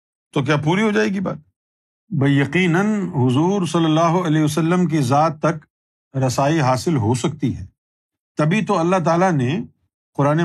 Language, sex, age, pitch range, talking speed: Urdu, male, 50-69, 140-195 Hz, 165 wpm